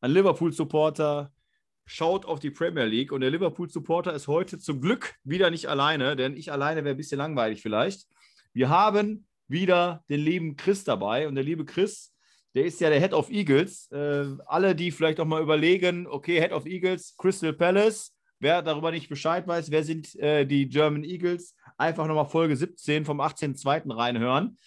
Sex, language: male, German